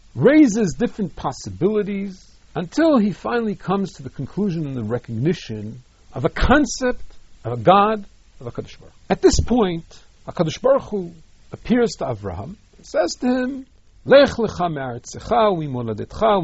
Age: 60-79